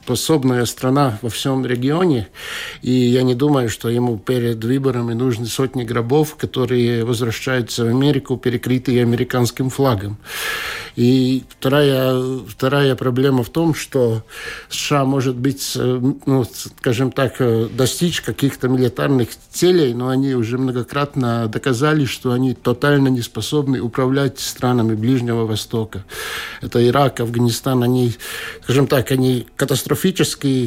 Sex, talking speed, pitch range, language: male, 120 wpm, 120-140 Hz, Russian